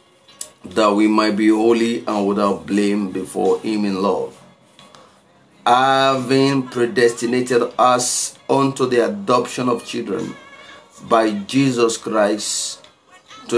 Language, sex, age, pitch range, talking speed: English, male, 30-49, 110-125 Hz, 105 wpm